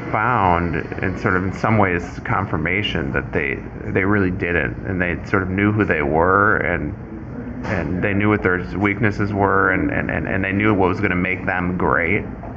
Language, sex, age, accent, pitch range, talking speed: English, male, 20-39, American, 95-110 Hz, 195 wpm